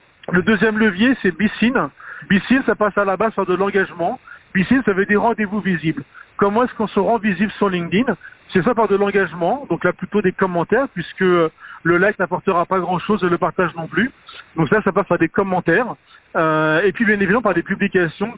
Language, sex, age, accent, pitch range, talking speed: French, male, 40-59, French, 175-215 Hz, 210 wpm